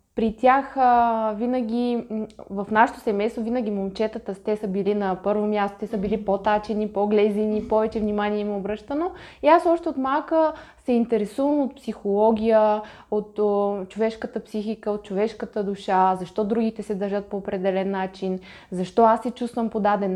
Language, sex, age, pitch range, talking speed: Bulgarian, female, 20-39, 205-255 Hz, 160 wpm